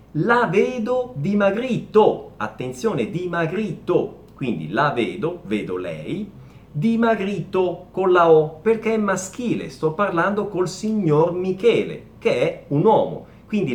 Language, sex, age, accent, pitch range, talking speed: Italian, male, 40-59, native, 140-215 Hz, 120 wpm